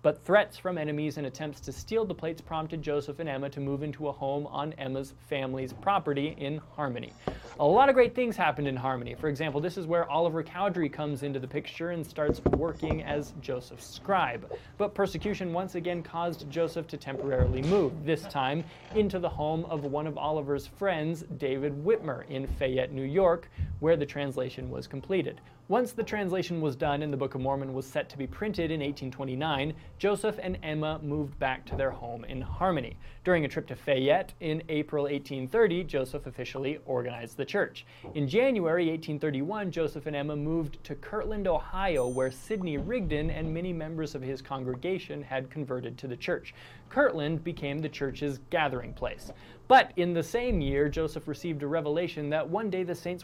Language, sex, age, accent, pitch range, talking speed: English, male, 20-39, American, 135-170 Hz, 185 wpm